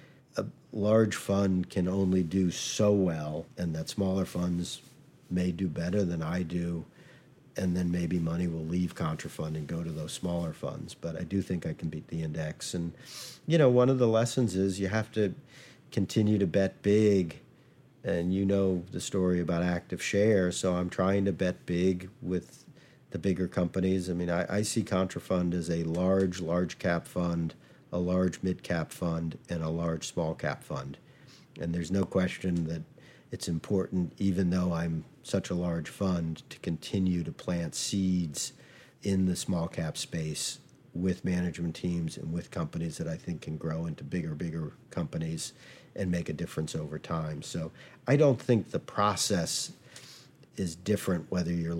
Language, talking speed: English, 175 wpm